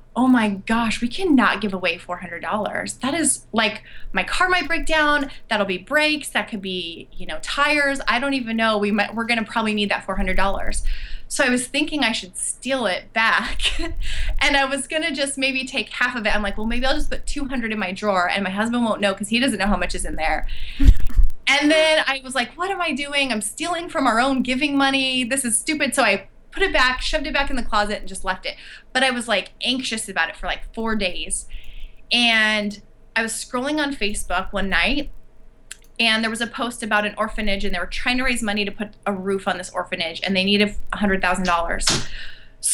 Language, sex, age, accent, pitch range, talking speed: English, female, 20-39, American, 205-275 Hz, 225 wpm